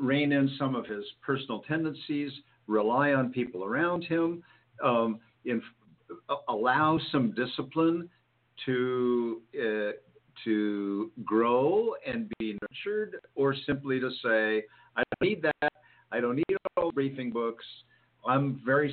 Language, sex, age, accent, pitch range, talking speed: English, male, 50-69, American, 120-160 Hz, 130 wpm